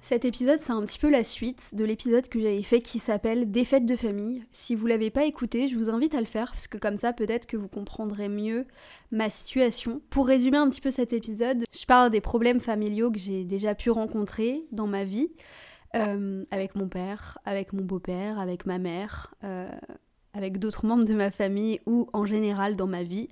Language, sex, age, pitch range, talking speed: French, female, 20-39, 210-245 Hz, 220 wpm